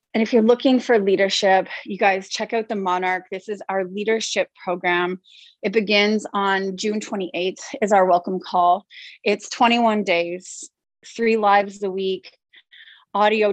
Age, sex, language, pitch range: 30-49, female, English, 190-220 Hz